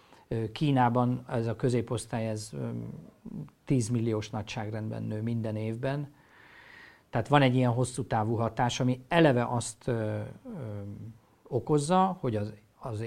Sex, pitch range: male, 110-135 Hz